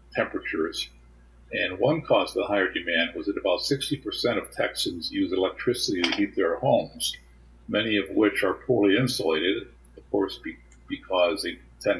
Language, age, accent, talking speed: English, 50-69, American, 160 wpm